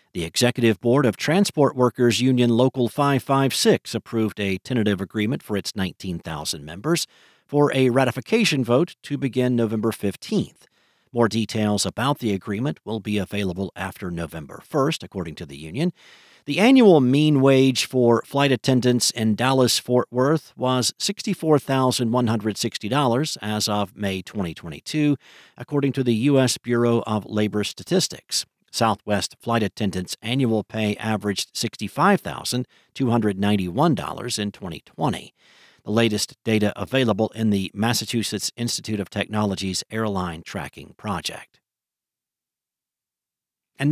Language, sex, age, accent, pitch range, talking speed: English, male, 50-69, American, 105-140 Hz, 120 wpm